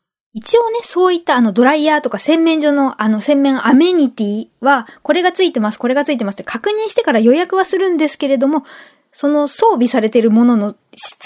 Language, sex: Japanese, female